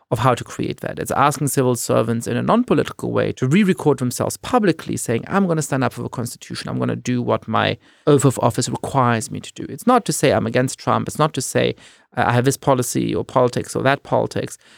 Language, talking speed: English, 240 wpm